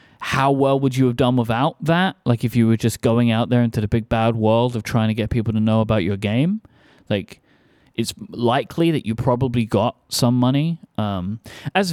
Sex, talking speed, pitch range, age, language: male, 210 wpm, 105-130 Hz, 30-49, English